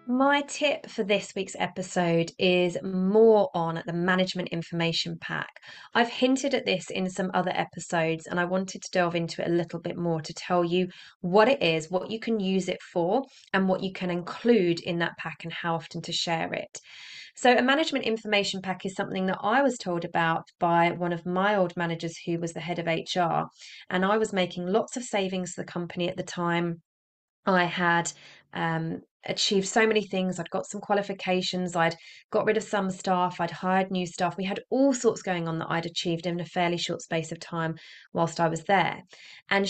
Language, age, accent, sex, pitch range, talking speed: English, 20-39, British, female, 170-205 Hz, 205 wpm